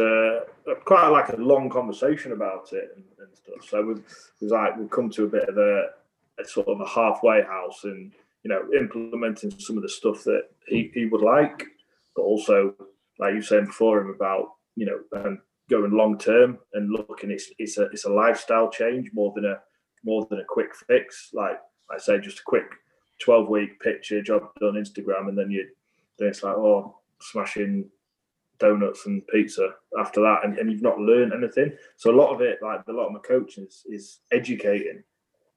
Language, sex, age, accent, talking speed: English, male, 20-39, British, 195 wpm